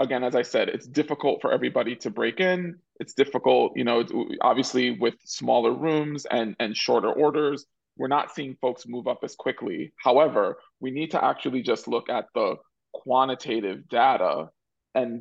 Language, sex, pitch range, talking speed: English, male, 115-135 Hz, 170 wpm